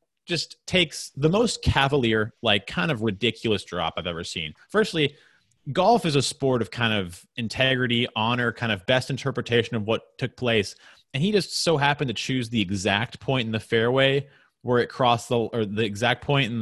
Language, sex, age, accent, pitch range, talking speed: English, male, 30-49, American, 100-130 Hz, 190 wpm